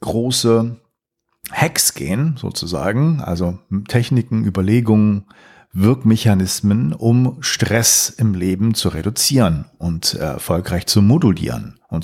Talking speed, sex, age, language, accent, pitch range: 95 wpm, male, 50-69, German, German, 95-125 Hz